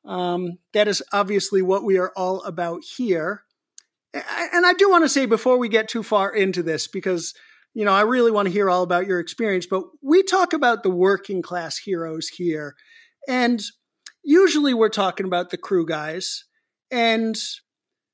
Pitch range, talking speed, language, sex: 180-265 Hz, 175 wpm, English, male